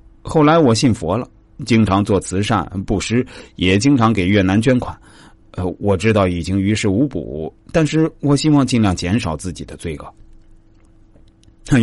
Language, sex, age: Chinese, male, 30-49